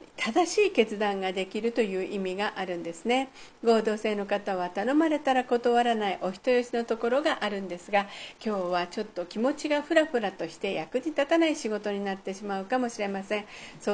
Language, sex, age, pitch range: Japanese, female, 50-69, 205-265 Hz